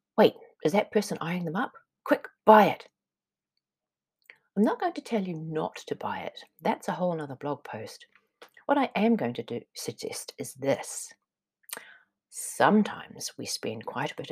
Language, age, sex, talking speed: English, 40-59, female, 170 wpm